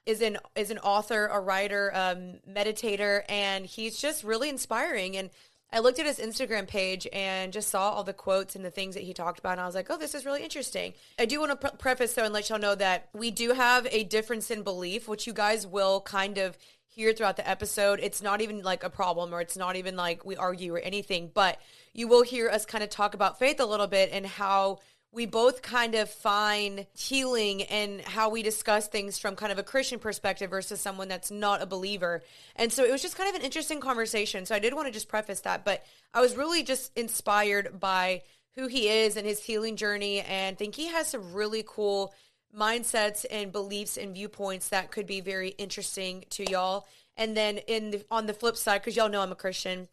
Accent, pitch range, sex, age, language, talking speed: American, 195-225 Hz, female, 20-39, English, 230 wpm